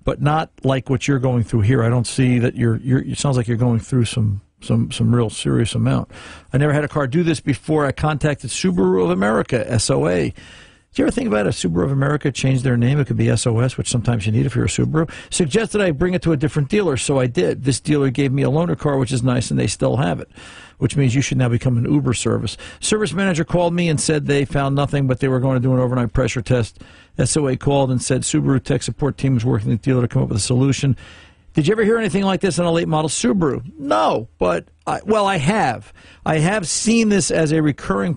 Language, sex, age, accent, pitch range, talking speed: English, male, 50-69, American, 125-155 Hz, 255 wpm